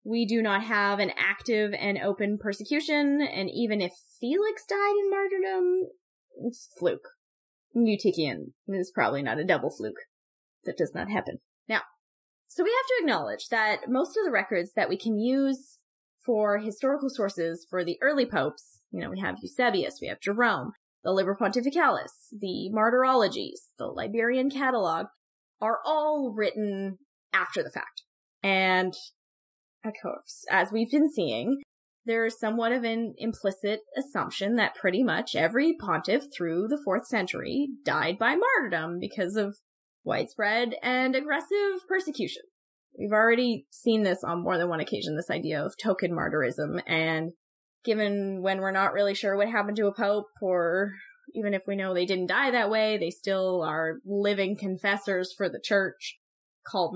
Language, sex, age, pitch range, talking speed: English, female, 10-29, 195-270 Hz, 155 wpm